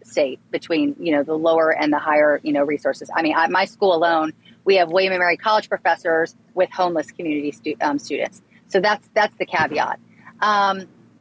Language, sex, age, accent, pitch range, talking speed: English, female, 30-49, American, 170-210 Hz, 195 wpm